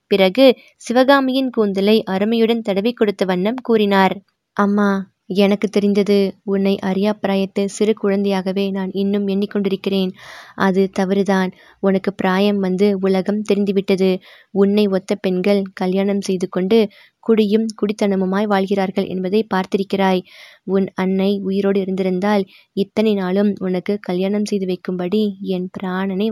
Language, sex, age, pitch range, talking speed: Tamil, female, 20-39, 185-205 Hz, 110 wpm